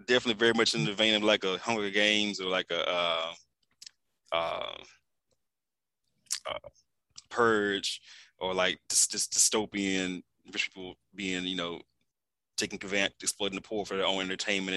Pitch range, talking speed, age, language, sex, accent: 90-105 Hz, 140 wpm, 20-39, English, male, American